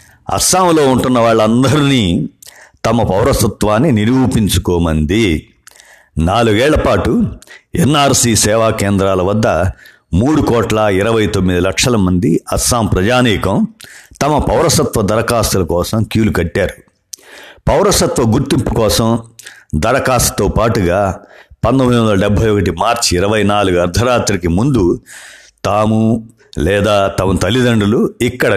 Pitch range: 95-115 Hz